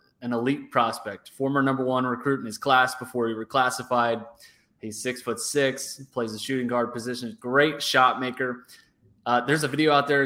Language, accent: English, American